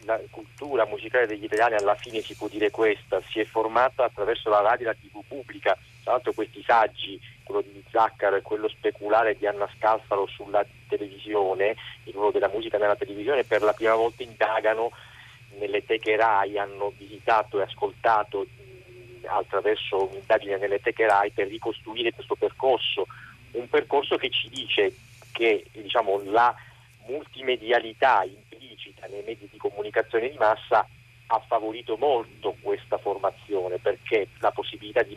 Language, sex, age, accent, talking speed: Italian, male, 50-69, native, 145 wpm